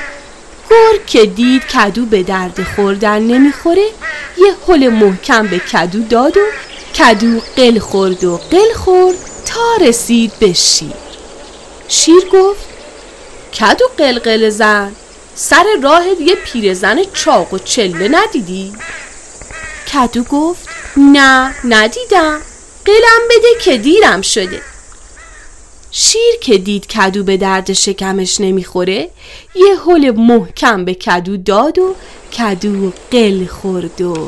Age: 30-49